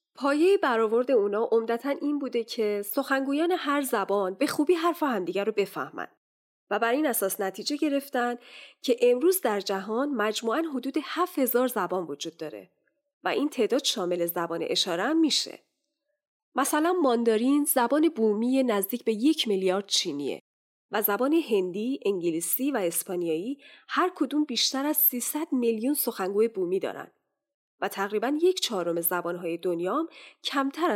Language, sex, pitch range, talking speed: Persian, female, 190-295 Hz, 140 wpm